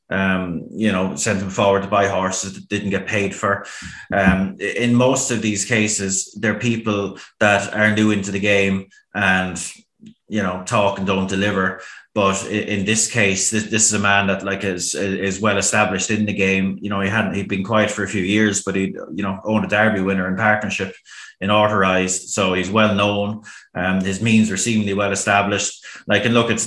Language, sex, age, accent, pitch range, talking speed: English, male, 20-39, Irish, 95-110 Hz, 205 wpm